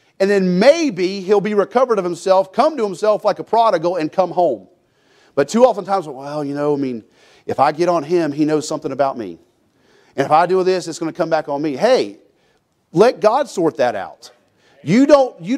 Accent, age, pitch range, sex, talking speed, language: American, 40-59, 165-220 Hz, male, 215 wpm, English